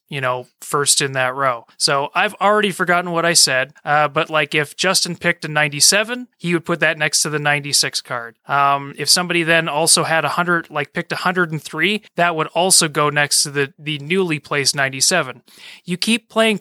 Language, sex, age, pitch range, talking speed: English, male, 30-49, 140-175 Hz, 200 wpm